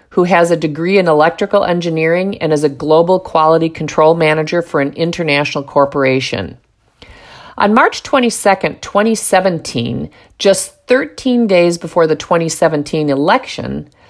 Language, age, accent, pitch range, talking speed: English, 50-69, American, 145-190 Hz, 125 wpm